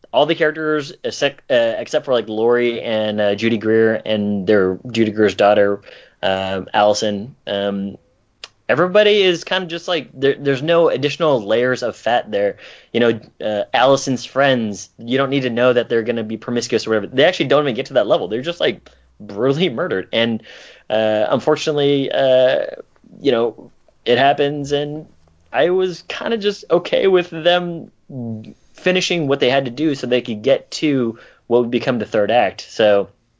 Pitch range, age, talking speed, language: 110-155 Hz, 20-39, 180 wpm, English